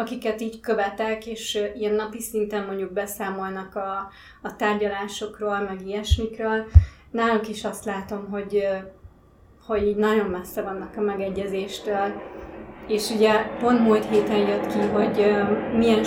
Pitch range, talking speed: 200-230 Hz, 125 wpm